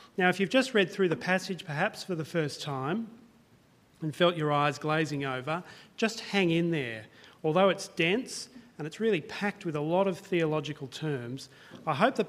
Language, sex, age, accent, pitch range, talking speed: English, male, 40-59, Australian, 145-195 Hz, 190 wpm